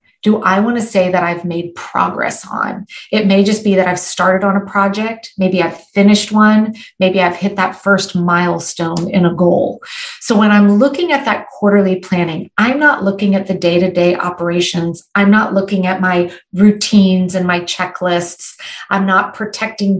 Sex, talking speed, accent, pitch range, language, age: female, 180 wpm, American, 185-220 Hz, English, 40-59